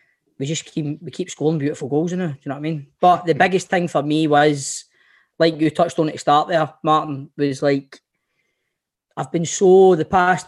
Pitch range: 130-155 Hz